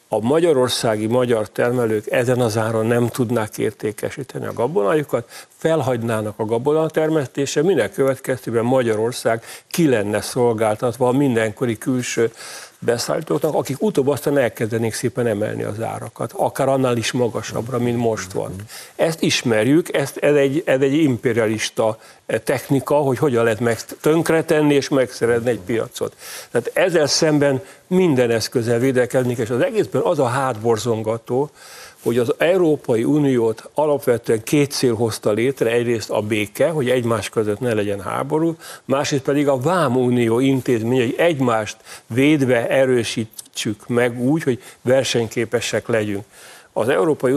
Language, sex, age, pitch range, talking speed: Hungarian, male, 60-79, 115-140 Hz, 130 wpm